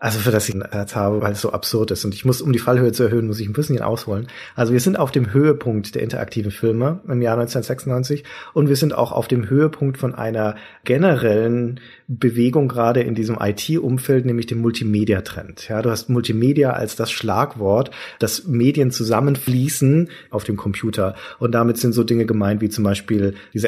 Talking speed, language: 195 wpm, German